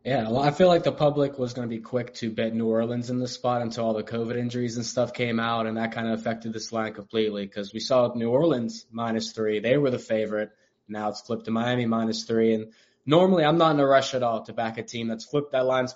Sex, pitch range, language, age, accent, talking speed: male, 115-135 Hz, English, 20-39, American, 265 wpm